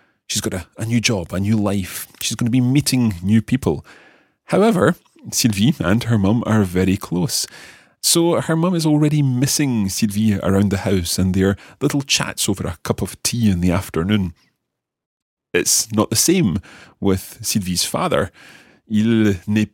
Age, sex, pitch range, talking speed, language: 30-49, male, 95-125 Hz, 165 wpm, English